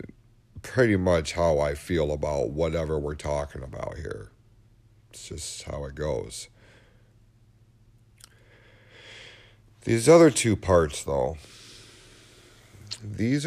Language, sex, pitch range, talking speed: English, male, 75-115 Hz, 100 wpm